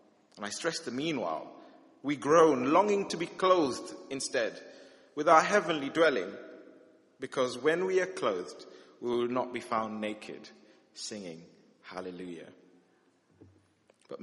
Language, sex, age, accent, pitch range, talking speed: English, male, 30-49, British, 110-140 Hz, 125 wpm